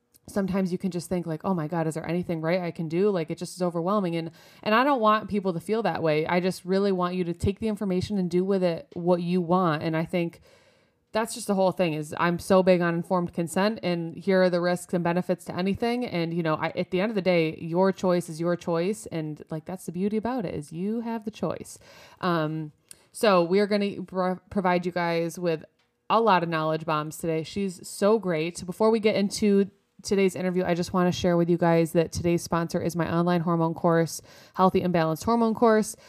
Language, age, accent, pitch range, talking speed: English, 20-39, American, 170-195 Hz, 240 wpm